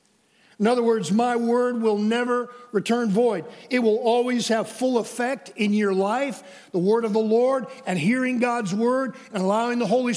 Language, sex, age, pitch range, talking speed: English, male, 50-69, 200-245 Hz, 185 wpm